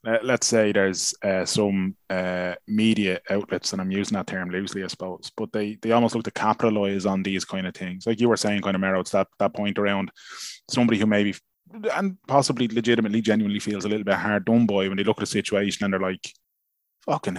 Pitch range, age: 100-120 Hz, 20-39